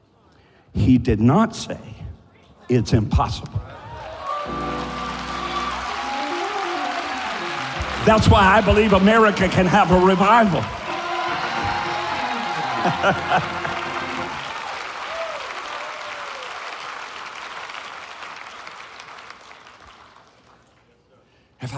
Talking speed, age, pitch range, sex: 45 wpm, 60-79, 120-170 Hz, male